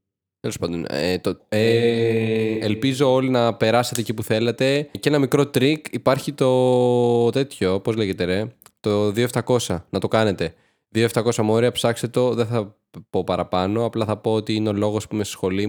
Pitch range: 105-135 Hz